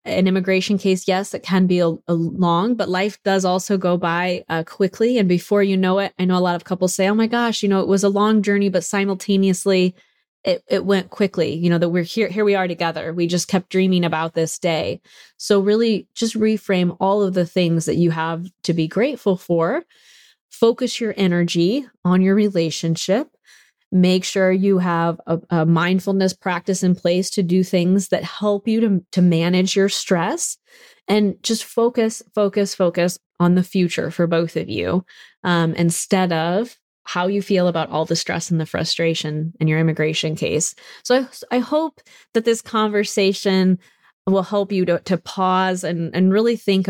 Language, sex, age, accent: English, female, 20-39, American